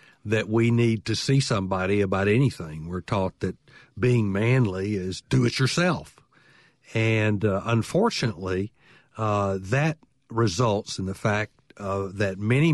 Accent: American